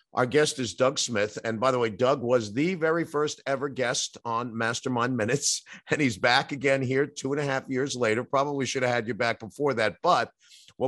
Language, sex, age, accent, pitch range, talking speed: English, male, 50-69, American, 105-130 Hz, 220 wpm